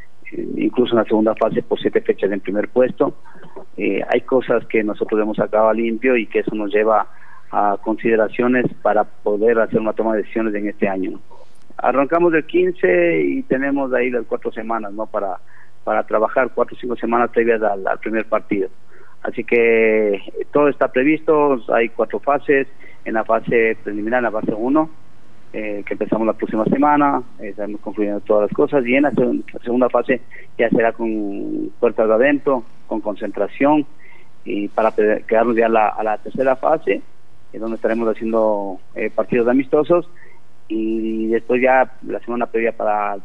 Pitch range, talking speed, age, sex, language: 110-140 Hz, 175 wpm, 40-59, male, Spanish